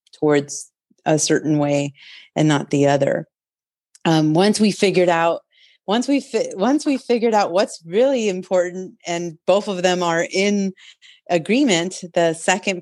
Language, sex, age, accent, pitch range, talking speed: English, female, 30-49, American, 155-185 Hz, 150 wpm